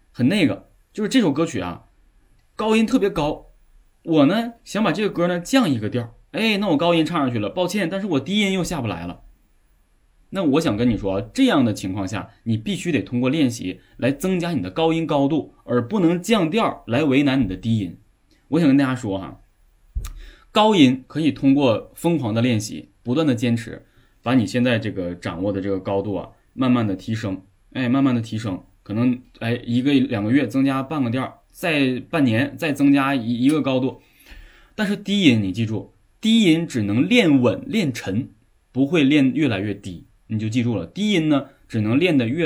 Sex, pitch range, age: male, 105-150 Hz, 20-39